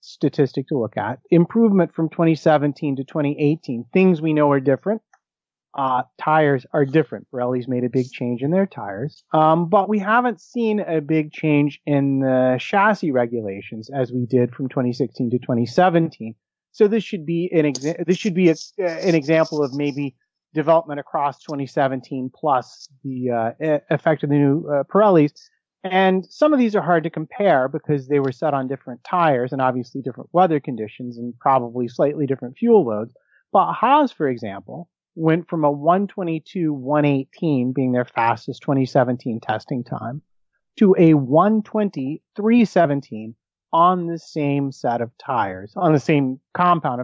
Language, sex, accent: English, male, American